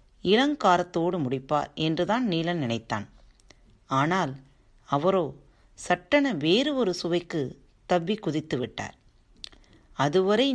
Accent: native